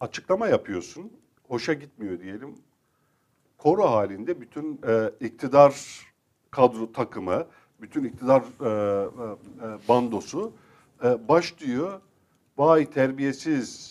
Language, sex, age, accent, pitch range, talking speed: Turkish, male, 50-69, native, 120-155 Hz, 95 wpm